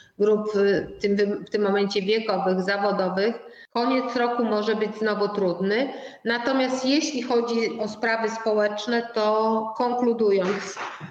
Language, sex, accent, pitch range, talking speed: Polish, female, native, 210-250 Hz, 115 wpm